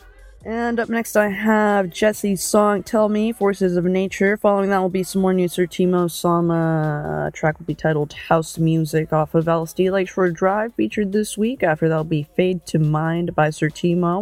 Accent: American